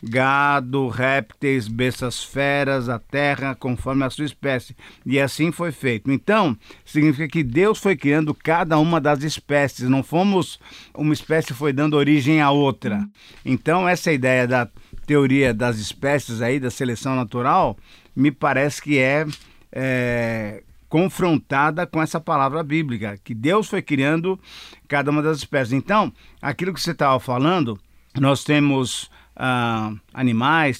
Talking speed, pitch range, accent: 135 wpm, 125-155 Hz, Brazilian